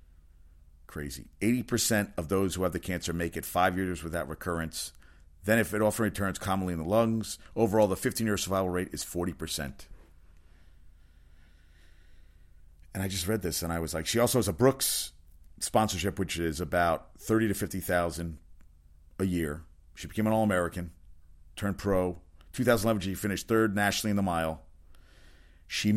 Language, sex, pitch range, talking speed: English, male, 75-95 Hz, 170 wpm